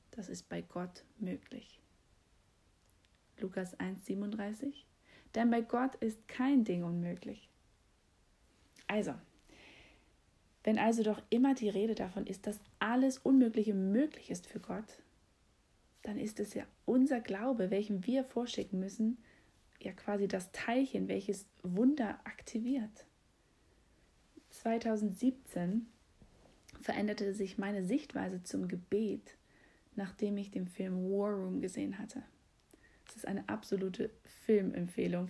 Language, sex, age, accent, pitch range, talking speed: German, female, 30-49, German, 190-245 Hz, 115 wpm